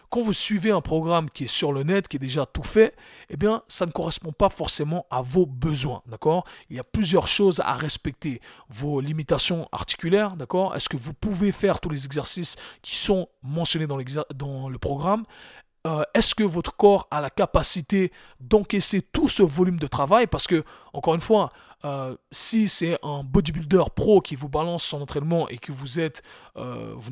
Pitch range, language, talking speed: 145-195 Hz, French, 195 wpm